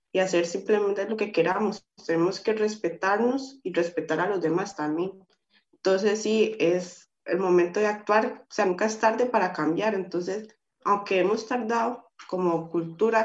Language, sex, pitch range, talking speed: Spanish, female, 180-220 Hz, 160 wpm